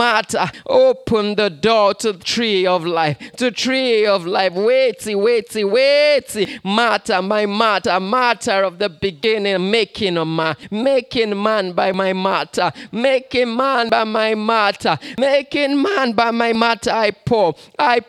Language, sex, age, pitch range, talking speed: English, male, 20-39, 195-240 Hz, 145 wpm